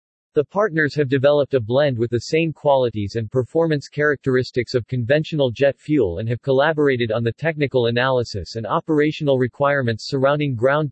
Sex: male